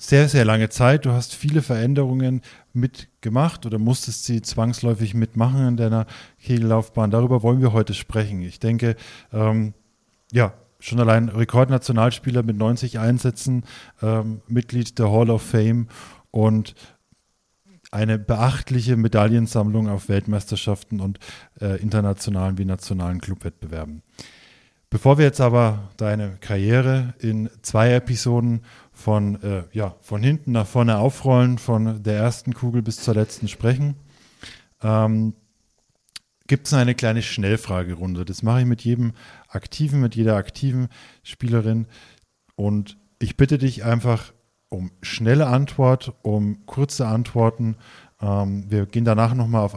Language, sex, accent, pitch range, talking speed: German, male, German, 105-125 Hz, 130 wpm